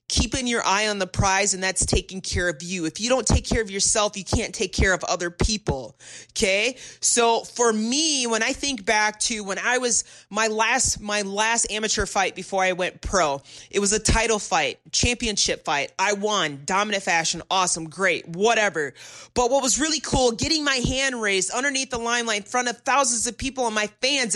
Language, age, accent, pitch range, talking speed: English, 30-49, American, 190-240 Hz, 205 wpm